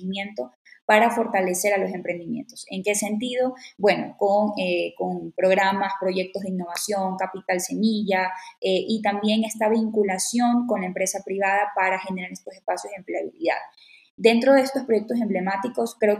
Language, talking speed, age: Spanish, 145 wpm, 10-29